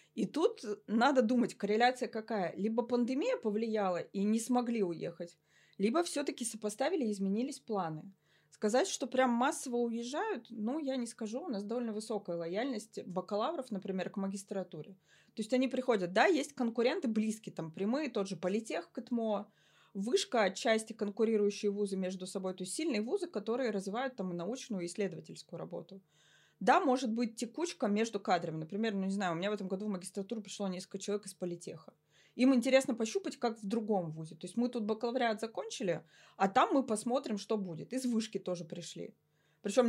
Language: Russian